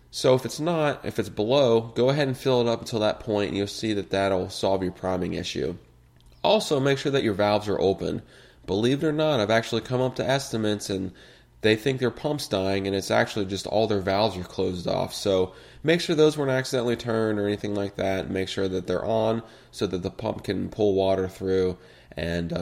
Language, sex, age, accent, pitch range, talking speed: English, male, 20-39, American, 95-120 Hz, 225 wpm